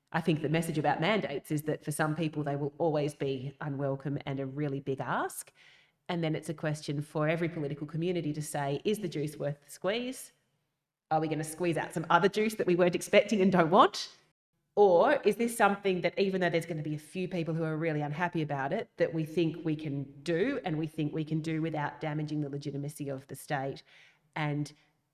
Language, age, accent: English, 30-49, Australian